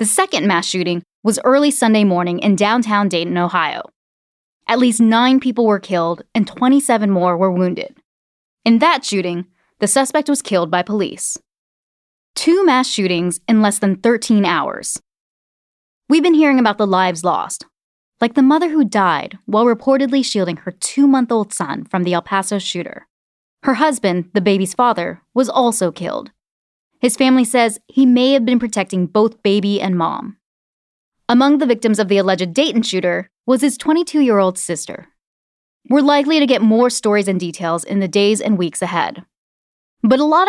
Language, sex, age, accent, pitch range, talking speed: English, female, 20-39, American, 185-255 Hz, 165 wpm